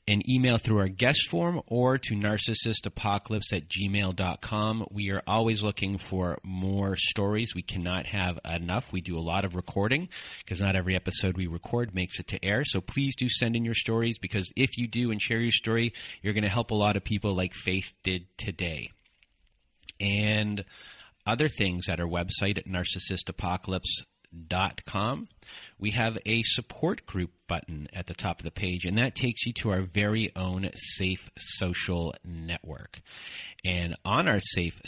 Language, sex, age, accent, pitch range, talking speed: English, male, 30-49, American, 90-110 Hz, 175 wpm